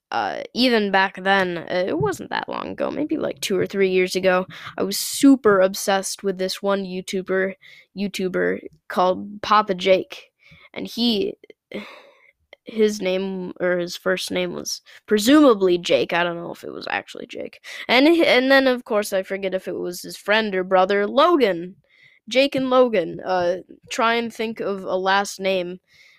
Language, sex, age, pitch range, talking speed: English, female, 10-29, 185-230 Hz, 165 wpm